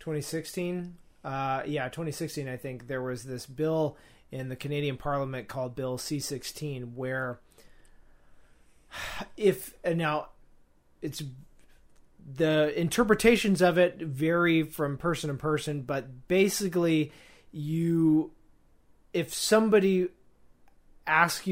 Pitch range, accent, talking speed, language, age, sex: 130-160 Hz, American, 100 wpm, English, 30-49, male